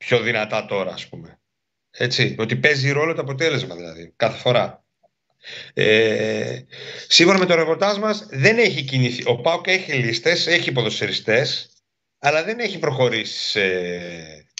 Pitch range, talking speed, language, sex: 125-160 Hz, 120 wpm, Greek, male